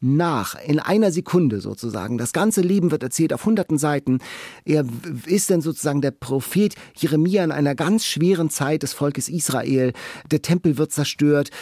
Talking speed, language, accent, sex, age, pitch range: 165 wpm, German, German, male, 40-59, 130-170 Hz